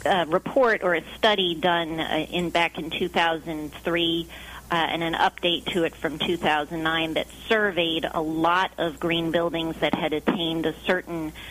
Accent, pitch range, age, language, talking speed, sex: American, 160-180 Hz, 40-59, English, 160 wpm, female